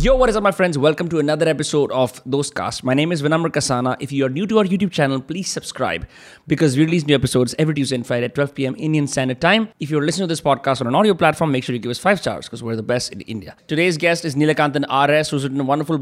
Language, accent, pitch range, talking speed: Hindi, native, 135-170 Hz, 290 wpm